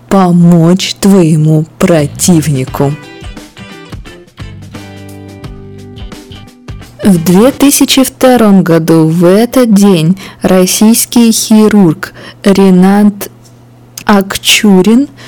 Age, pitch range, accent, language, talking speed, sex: 20-39, 150-205 Hz, native, Russian, 50 wpm, female